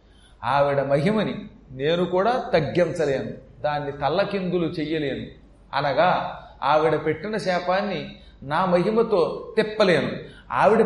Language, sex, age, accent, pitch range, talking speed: Telugu, male, 30-49, native, 150-210 Hz, 90 wpm